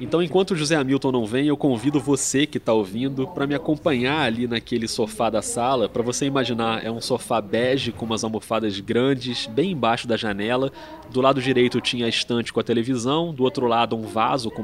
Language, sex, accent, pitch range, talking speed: Portuguese, male, Brazilian, 115-150 Hz, 210 wpm